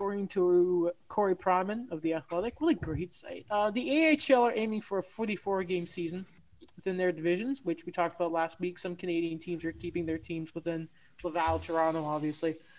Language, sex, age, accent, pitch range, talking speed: English, male, 20-39, American, 170-225 Hz, 185 wpm